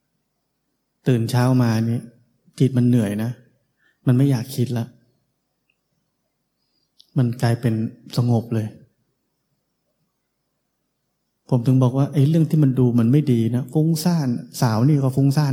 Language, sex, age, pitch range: Thai, male, 20-39, 120-140 Hz